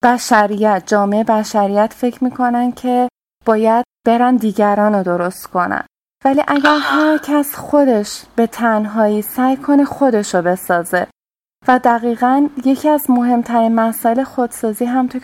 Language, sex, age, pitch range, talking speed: Persian, female, 20-39, 210-250 Hz, 125 wpm